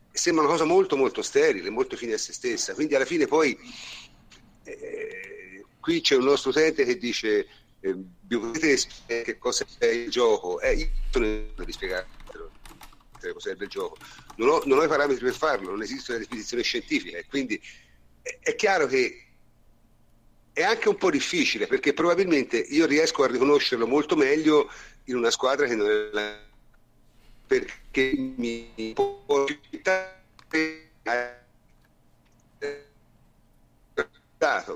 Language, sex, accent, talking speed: Italian, male, native, 135 wpm